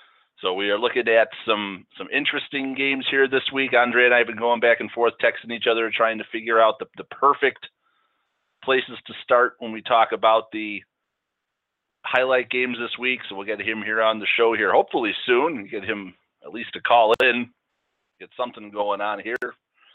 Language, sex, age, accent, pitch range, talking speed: English, male, 30-49, American, 110-125 Hz, 200 wpm